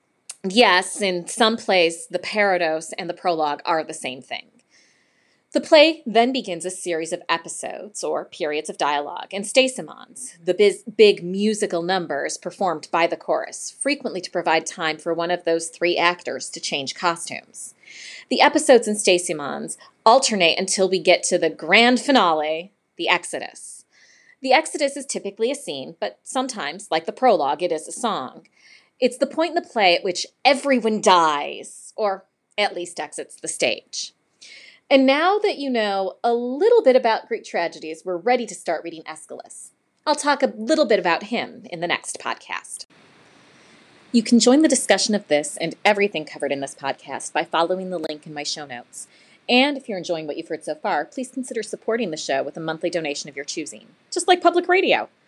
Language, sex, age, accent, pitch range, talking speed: English, female, 30-49, American, 165-245 Hz, 180 wpm